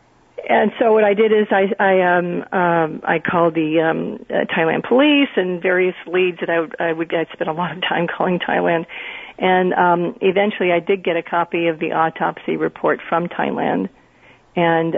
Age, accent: 40-59, American